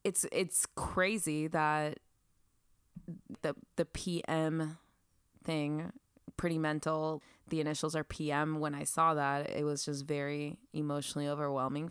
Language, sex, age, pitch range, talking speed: English, female, 20-39, 145-165 Hz, 120 wpm